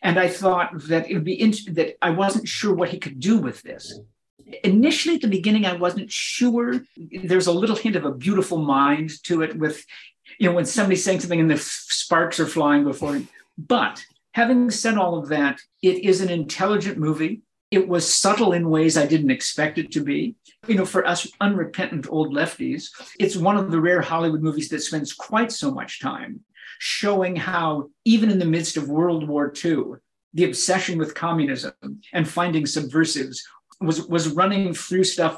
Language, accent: English, American